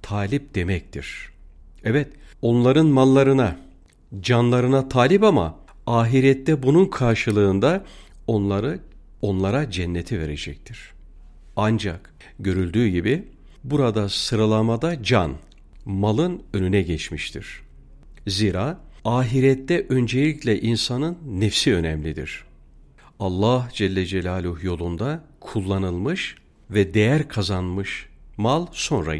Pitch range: 85-130 Hz